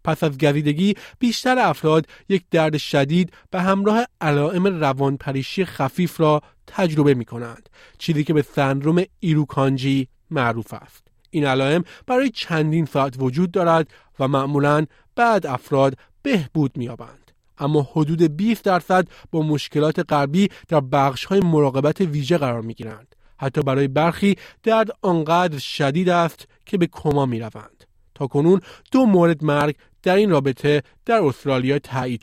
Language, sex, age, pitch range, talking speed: Persian, male, 30-49, 135-175 Hz, 140 wpm